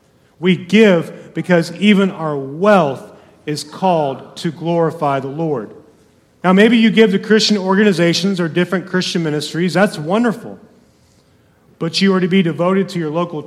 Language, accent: English, American